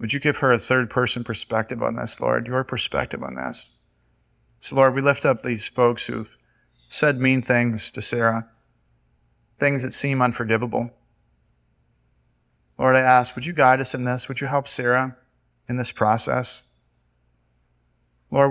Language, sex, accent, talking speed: English, male, American, 155 wpm